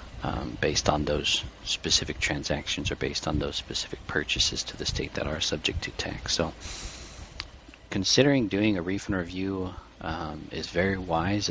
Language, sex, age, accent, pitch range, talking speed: English, male, 40-59, American, 80-95 Hz, 155 wpm